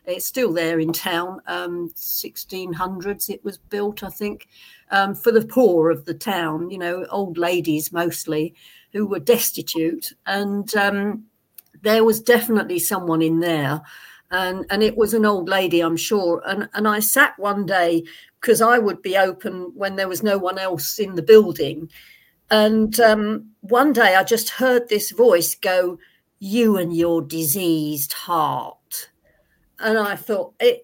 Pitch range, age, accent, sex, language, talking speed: 170-215 Hz, 50-69, British, female, English, 160 wpm